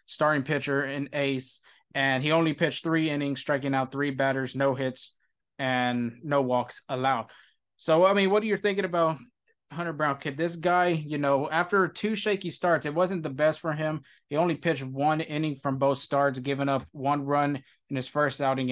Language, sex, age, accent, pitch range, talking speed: English, male, 20-39, American, 135-155 Hz, 195 wpm